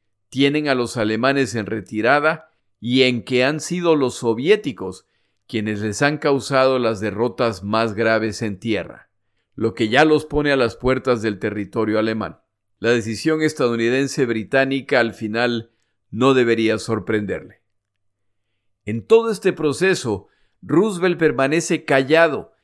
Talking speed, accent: 135 wpm, Mexican